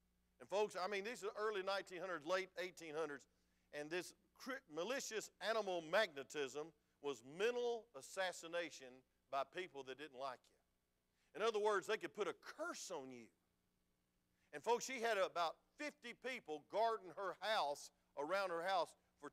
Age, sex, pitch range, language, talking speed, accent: 50-69, male, 150-215 Hz, English, 150 wpm, American